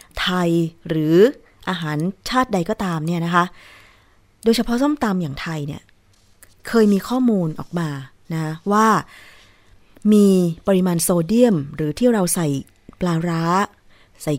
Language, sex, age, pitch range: Thai, female, 20-39, 155-205 Hz